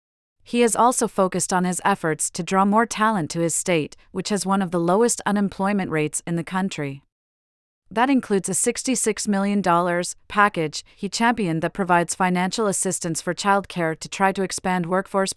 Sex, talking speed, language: female, 170 wpm, English